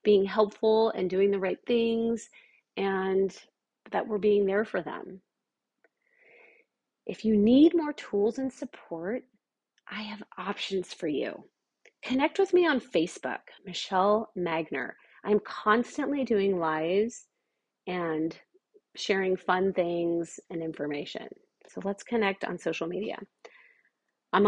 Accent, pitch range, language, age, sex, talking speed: American, 180-240 Hz, English, 30-49, female, 125 wpm